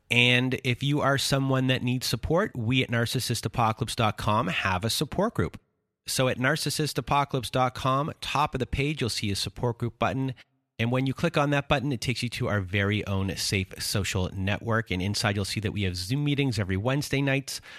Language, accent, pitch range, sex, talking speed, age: English, American, 100-130 Hz, male, 190 wpm, 30-49